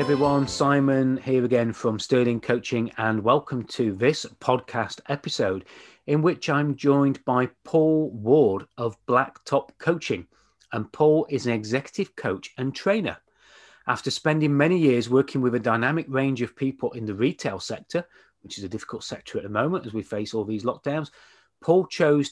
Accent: British